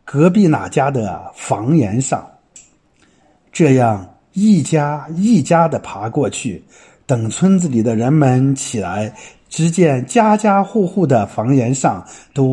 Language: Chinese